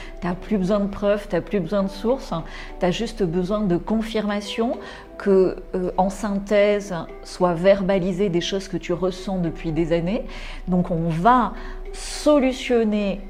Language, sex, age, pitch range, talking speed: French, female, 40-59, 180-215 Hz, 155 wpm